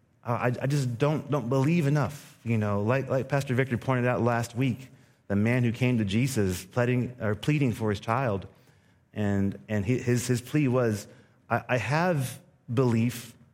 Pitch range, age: 105-140 Hz, 30-49